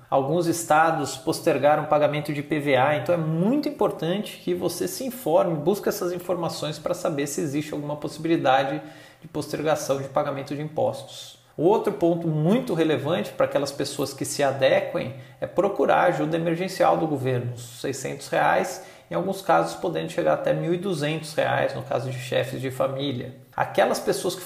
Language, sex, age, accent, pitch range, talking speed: Portuguese, male, 40-59, Brazilian, 145-180 Hz, 160 wpm